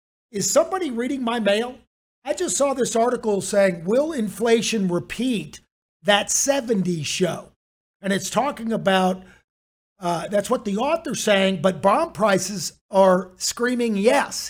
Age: 50-69